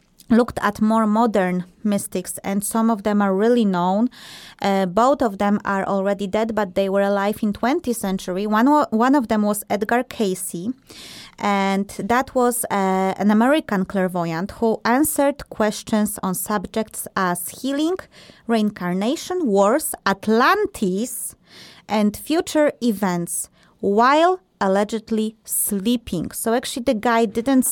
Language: English